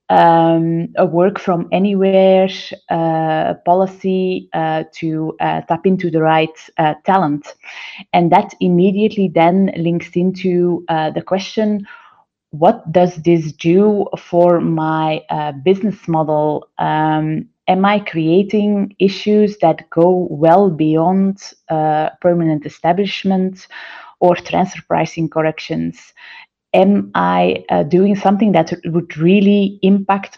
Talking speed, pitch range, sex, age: 115 wpm, 160-190 Hz, female, 20-39